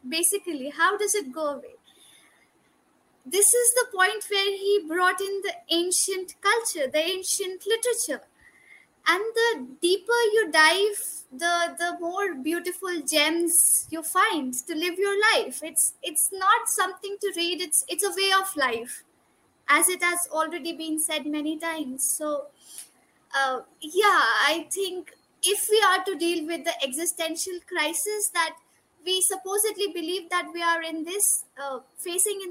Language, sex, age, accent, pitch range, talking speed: Hindi, female, 20-39, native, 300-390 Hz, 150 wpm